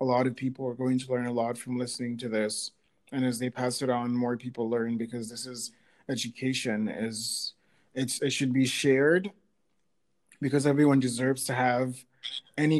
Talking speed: 185 wpm